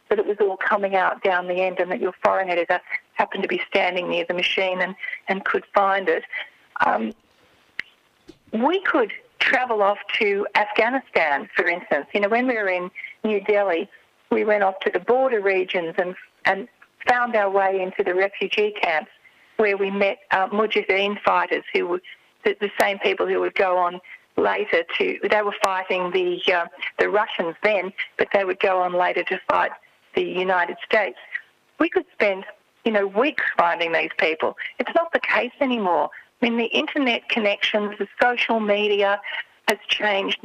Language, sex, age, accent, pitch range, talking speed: English, female, 50-69, Australian, 190-240 Hz, 180 wpm